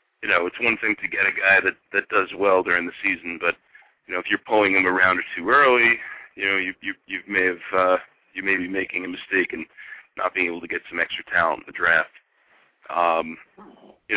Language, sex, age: English, male, 40-59